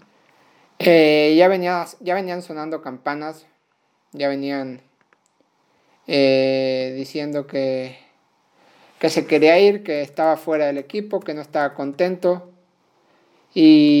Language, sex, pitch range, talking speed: Spanish, male, 145-165 Hz, 110 wpm